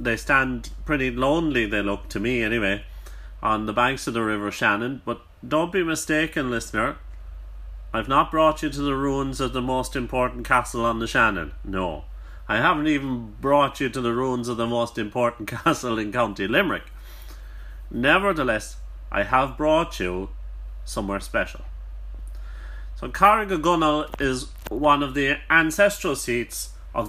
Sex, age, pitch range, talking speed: male, 30-49, 100-135 Hz, 155 wpm